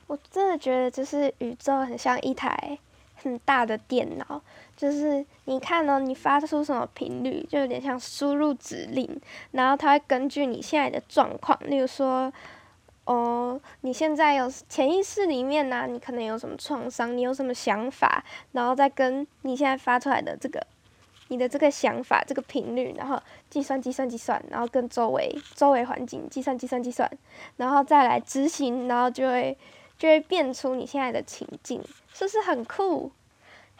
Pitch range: 250-290 Hz